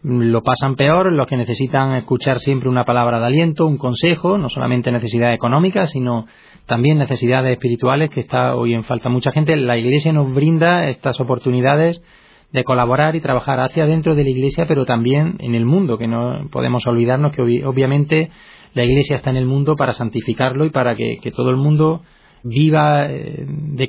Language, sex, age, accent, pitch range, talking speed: Spanish, male, 30-49, Spanish, 125-155 Hz, 180 wpm